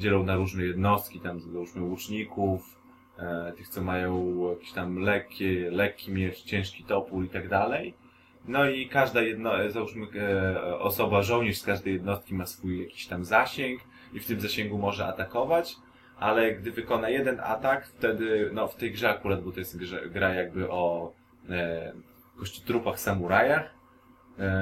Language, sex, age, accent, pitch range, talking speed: Polish, male, 20-39, native, 90-105 Hz, 160 wpm